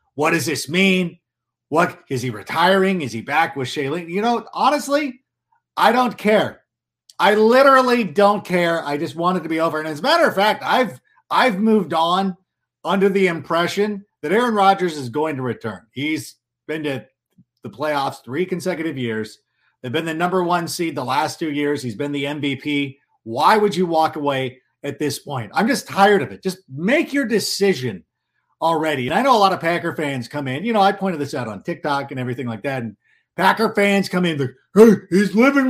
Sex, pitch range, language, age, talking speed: male, 145-220 Hz, English, 50-69, 200 wpm